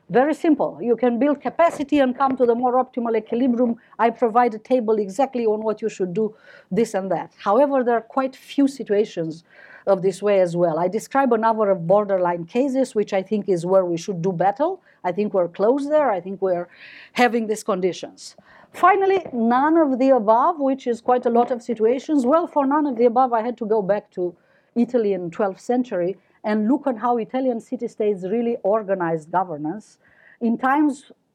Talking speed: 200 wpm